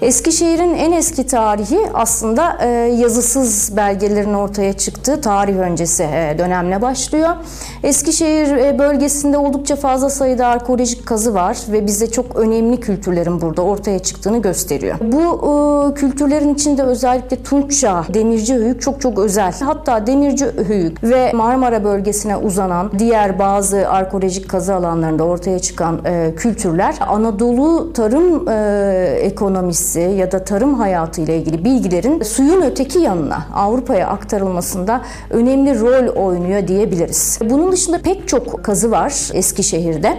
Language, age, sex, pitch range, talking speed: Turkish, 30-49, female, 195-275 Hz, 120 wpm